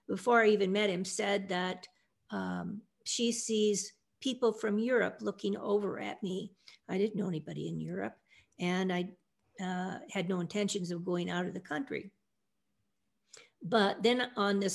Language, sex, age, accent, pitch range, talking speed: English, female, 50-69, American, 185-220 Hz, 160 wpm